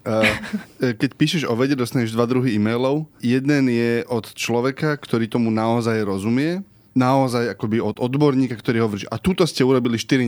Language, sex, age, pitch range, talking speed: Slovak, male, 20-39, 115-135 Hz, 165 wpm